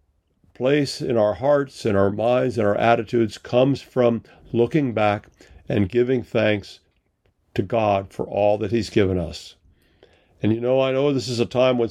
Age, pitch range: 50-69, 100-125 Hz